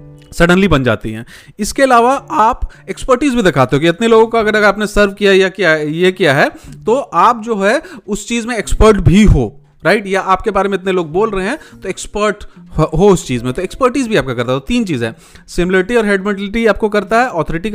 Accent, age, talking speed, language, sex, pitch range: native, 30-49, 225 wpm, Hindi, male, 150-205 Hz